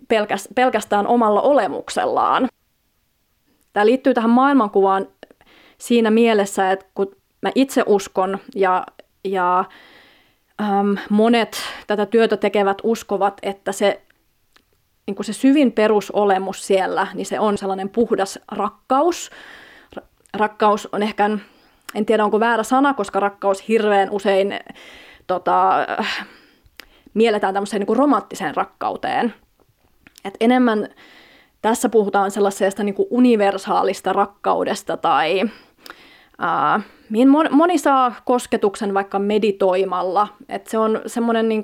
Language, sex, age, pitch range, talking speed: Finnish, female, 20-39, 200-240 Hz, 105 wpm